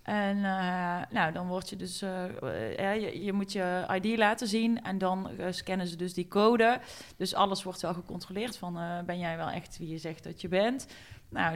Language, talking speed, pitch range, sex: Dutch, 215 wpm, 180-215 Hz, female